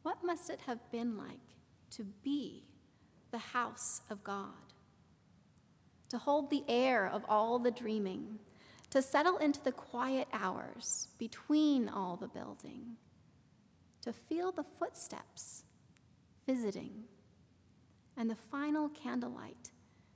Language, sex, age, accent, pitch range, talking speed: English, female, 30-49, American, 230-280 Hz, 115 wpm